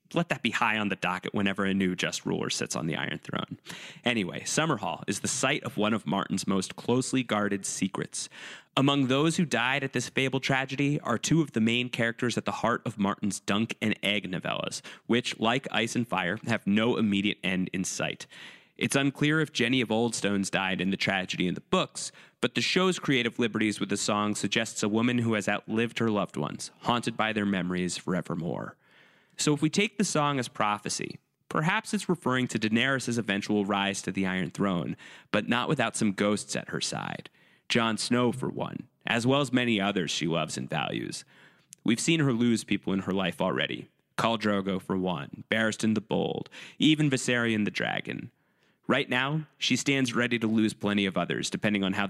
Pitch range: 100-135 Hz